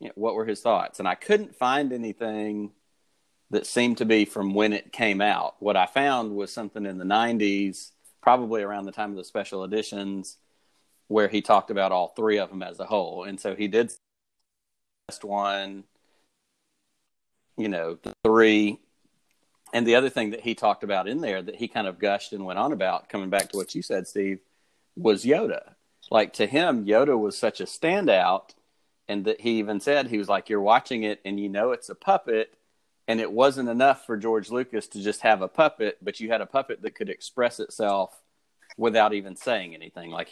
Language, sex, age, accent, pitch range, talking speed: English, male, 40-59, American, 100-115 Hz, 200 wpm